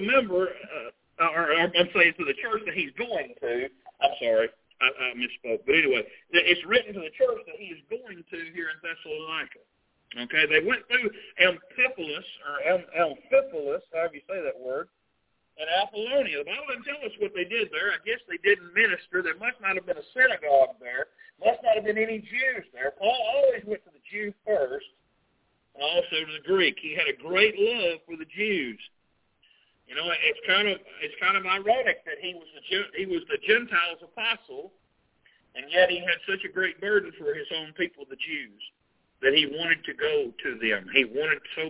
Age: 50-69